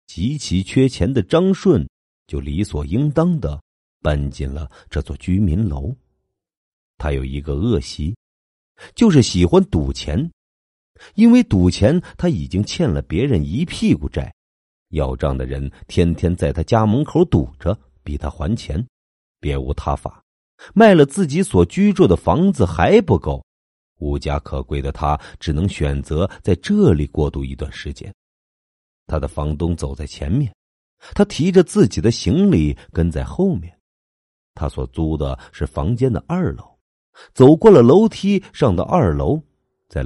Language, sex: Chinese, male